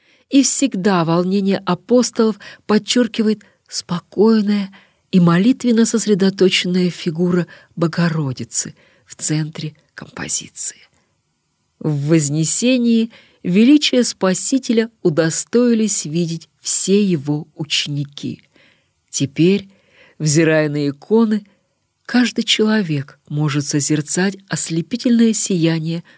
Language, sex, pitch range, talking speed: Russian, female, 155-210 Hz, 75 wpm